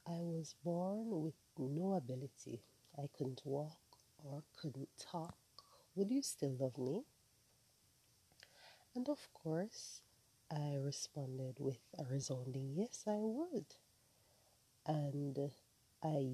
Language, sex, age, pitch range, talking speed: English, female, 30-49, 130-155 Hz, 110 wpm